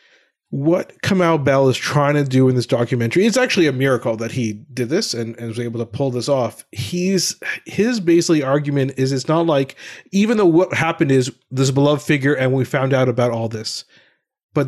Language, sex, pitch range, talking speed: English, male, 125-165 Hz, 205 wpm